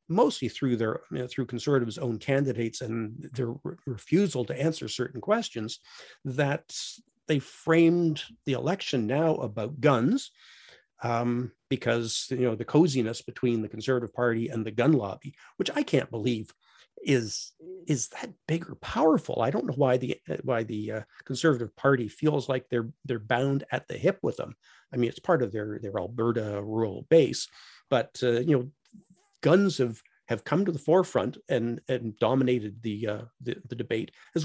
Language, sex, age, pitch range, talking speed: English, male, 50-69, 120-160 Hz, 165 wpm